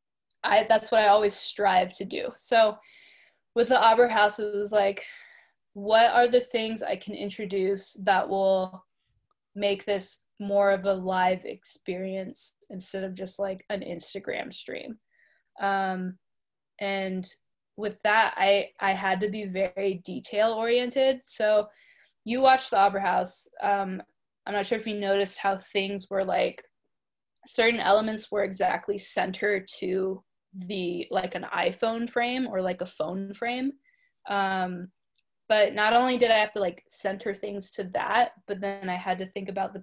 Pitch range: 190-225 Hz